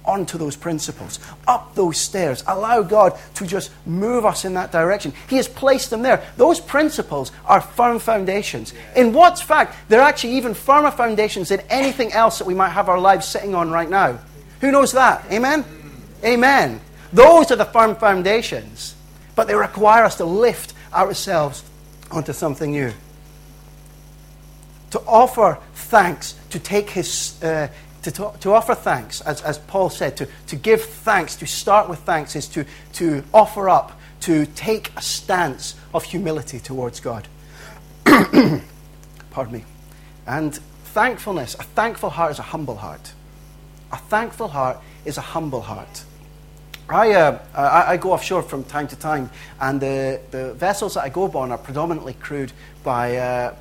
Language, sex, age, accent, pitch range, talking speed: English, male, 30-49, British, 130-215 Hz, 160 wpm